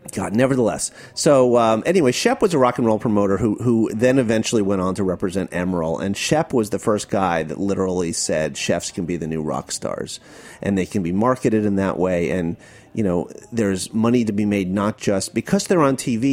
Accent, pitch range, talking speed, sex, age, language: American, 90-115 Hz, 215 wpm, male, 30-49, English